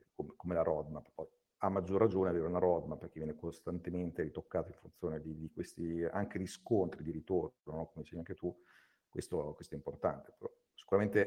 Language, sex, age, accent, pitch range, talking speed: Italian, male, 50-69, native, 90-110 Hz, 180 wpm